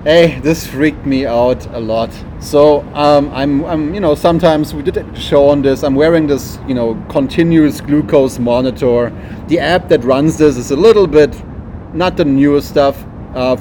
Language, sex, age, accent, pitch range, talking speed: English, male, 30-49, German, 125-155 Hz, 185 wpm